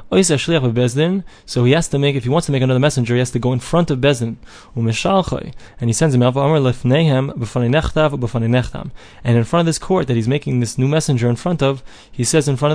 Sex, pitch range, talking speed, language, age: male, 115-150 Hz, 205 wpm, English, 20-39